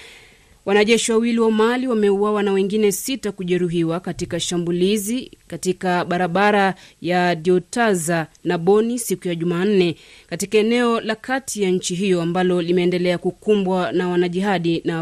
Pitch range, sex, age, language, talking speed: 180-220 Hz, female, 30-49, Swahili, 130 wpm